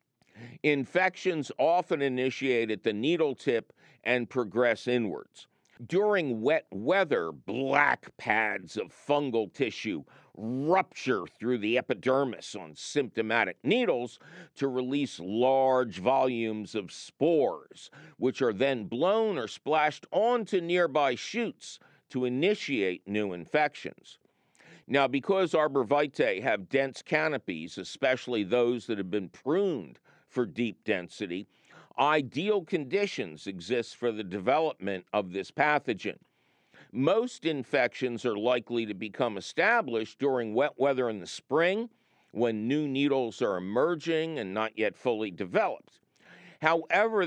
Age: 50-69